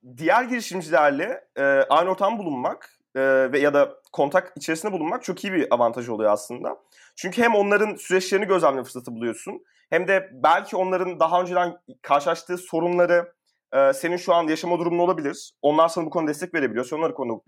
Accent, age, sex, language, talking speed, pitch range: native, 30-49, male, Turkish, 165 wpm, 130-175 Hz